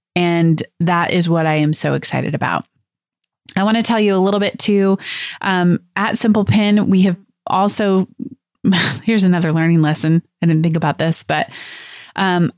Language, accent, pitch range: English, American, 160-190 Hz